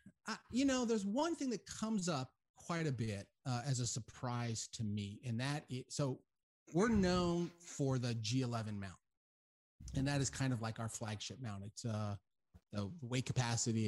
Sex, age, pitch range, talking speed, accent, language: male, 30-49, 105-130 Hz, 180 wpm, American, English